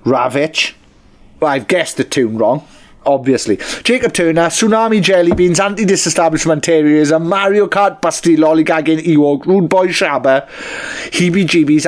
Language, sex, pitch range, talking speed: English, male, 140-195 Hz, 125 wpm